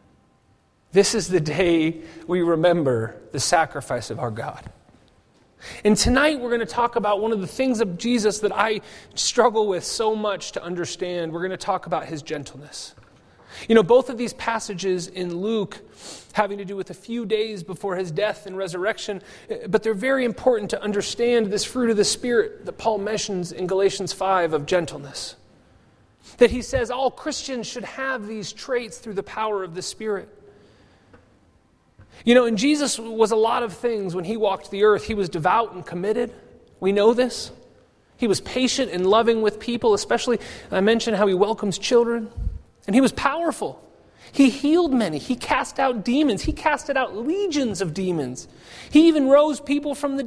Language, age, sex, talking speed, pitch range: English, 30-49, male, 180 wpm, 185-245 Hz